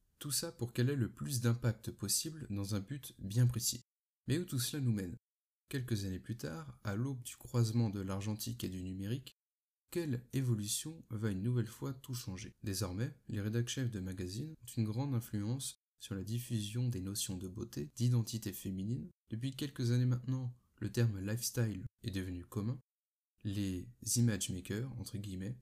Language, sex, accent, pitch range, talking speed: French, male, French, 105-125 Hz, 175 wpm